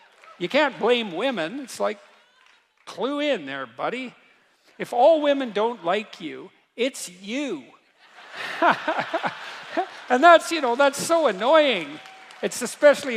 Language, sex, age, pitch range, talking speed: English, male, 50-69, 170-245 Hz, 125 wpm